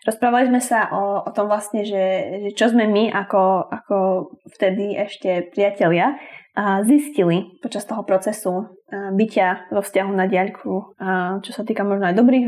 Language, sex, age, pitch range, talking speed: English, female, 20-39, 185-225 Hz, 155 wpm